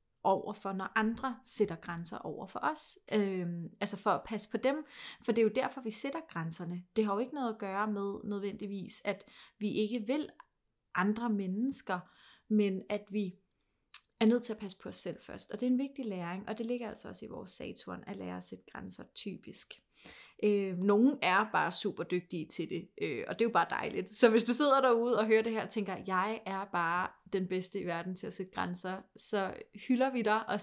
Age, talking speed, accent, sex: 30-49, 220 wpm, native, female